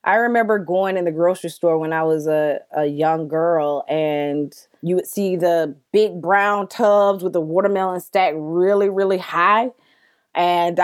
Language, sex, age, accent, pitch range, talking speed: English, female, 20-39, American, 170-205 Hz, 165 wpm